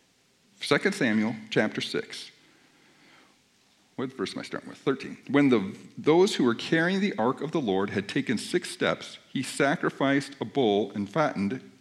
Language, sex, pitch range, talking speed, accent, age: English, male, 110-165 Hz, 165 wpm, American, 50-69